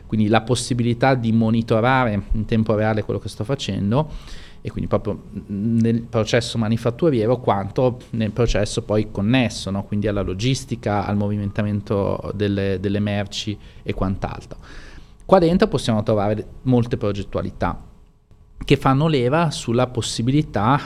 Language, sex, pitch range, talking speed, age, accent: Italian, male, 100-120 Hz, 125 wpm, 30-49, native